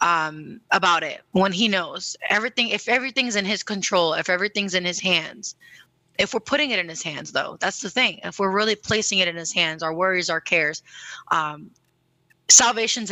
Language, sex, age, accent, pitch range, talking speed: Spanish, female, 20-39, American, 175-215 Hz, 190 wpm